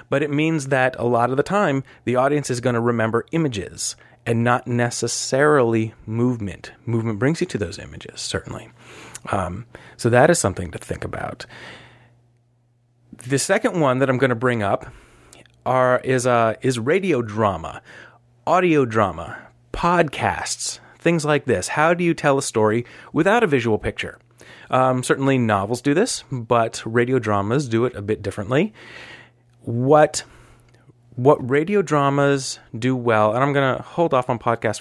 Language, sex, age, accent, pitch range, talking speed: English, male, 30-49, American, 115-140 Hz, 160 wpm